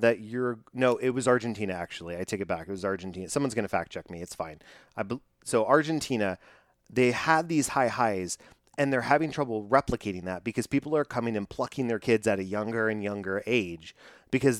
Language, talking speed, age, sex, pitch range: English, 205 wpm, 30-49, male, 105-135 Hz